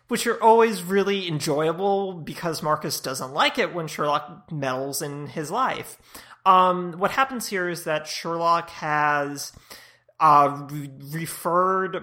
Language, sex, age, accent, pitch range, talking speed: English, male, 30-49, American, 145-175 Hz, 135 wpm